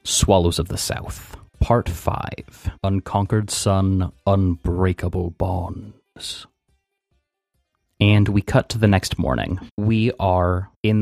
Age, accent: 30-49, American